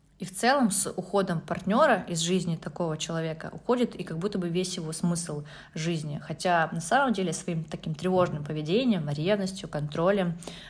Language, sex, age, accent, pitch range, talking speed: Russian, female, 20-39, native, 165-195 Hz, 165 wpm